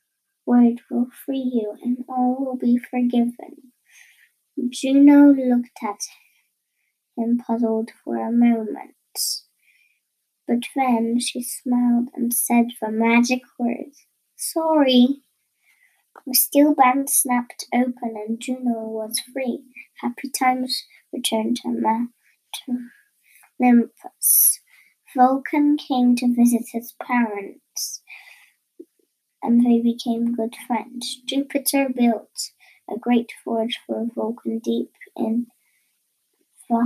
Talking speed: 105 wpm